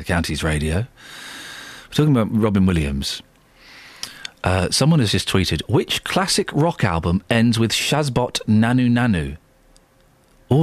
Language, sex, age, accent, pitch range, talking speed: English, male, 40-59, British, 95-160 Hz, 125 wpm